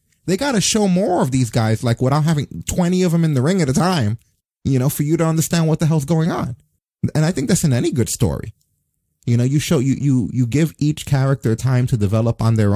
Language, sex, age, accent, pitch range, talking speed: English, male, 30-49, American, 100-135 Hz, 255 wpm